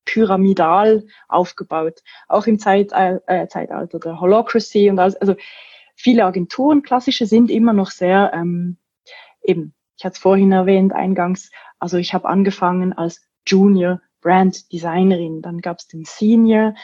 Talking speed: 135 wpm